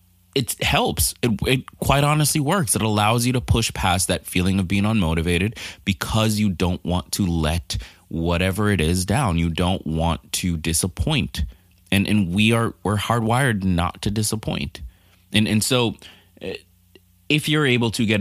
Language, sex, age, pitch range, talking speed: English, male, 20-39, 85-105 Hz, 165 wpm